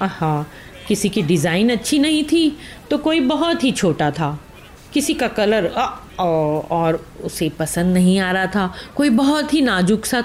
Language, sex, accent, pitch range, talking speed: Hindi, female, native, 170-265 Hz, 175 wpm